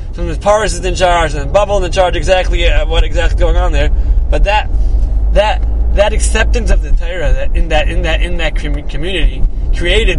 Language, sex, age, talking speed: English, male, 30-49, 200 wpm